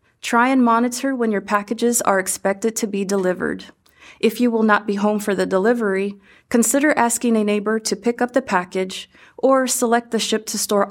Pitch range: 195-240 Hz